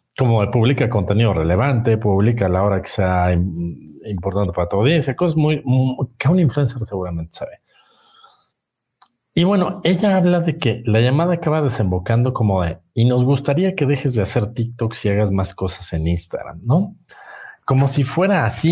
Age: 50-69